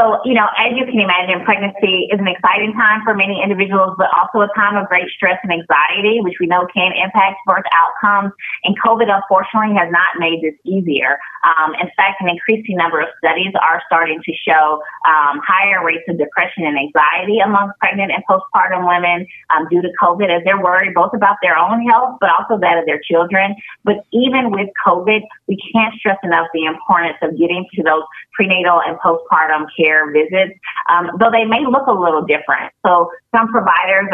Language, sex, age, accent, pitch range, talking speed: English, female, 30-49, American, 165-200 Hz, 195 wpm